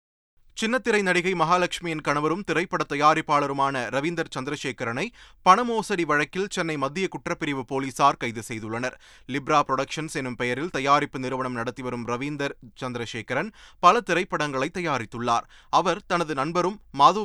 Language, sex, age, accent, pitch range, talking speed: Tamil, male, 30-49, native, 130-175 Hz, 110 wpm